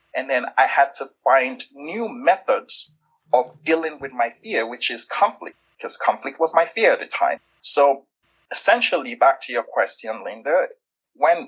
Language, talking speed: English, 165 wpm